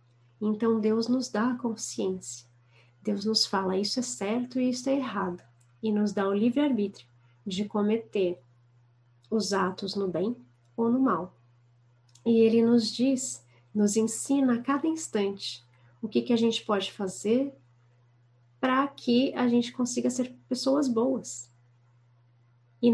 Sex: female